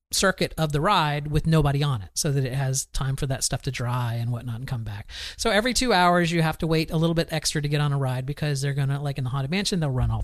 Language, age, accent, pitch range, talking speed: English, 40-59, American, 130-170 Hz, 300 wpm